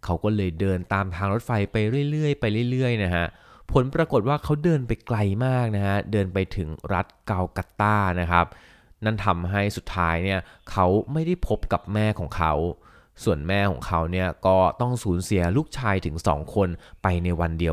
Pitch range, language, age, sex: 85-105 Hz, Thai, 20-39, male